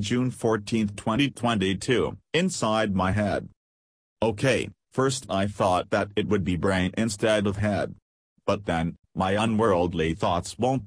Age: 40-59